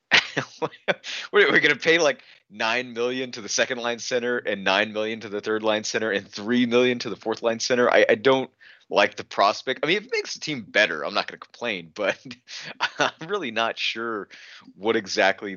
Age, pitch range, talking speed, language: 30-49, 100-135 Hz, 210 wpm, English